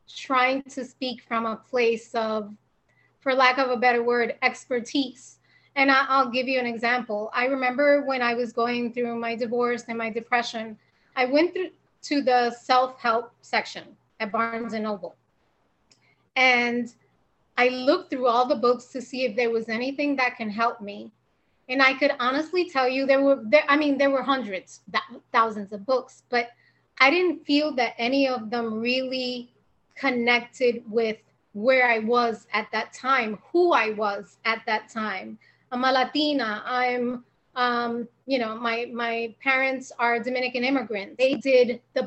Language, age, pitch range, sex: English, 20-39, 230-265 Hz, female